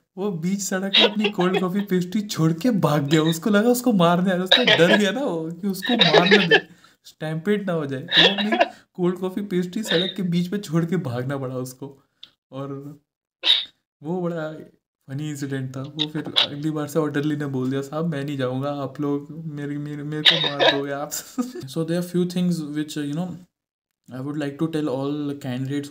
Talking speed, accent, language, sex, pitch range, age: 195 wpm, native, Hindi, male, 130-165 Hz, 20-39